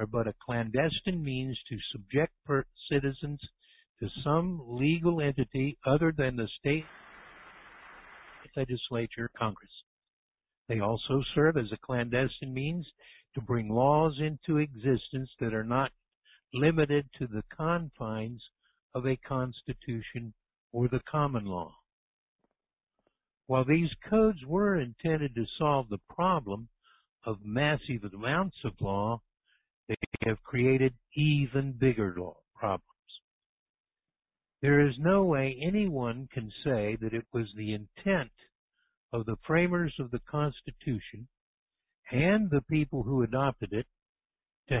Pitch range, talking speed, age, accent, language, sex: 115-150 Hz, 120 wpm, 60-79, American, English, male